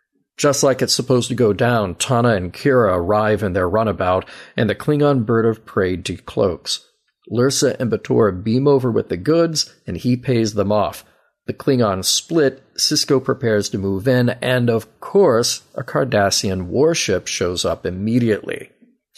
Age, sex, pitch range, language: 40-59, male, 105-135 Hz, English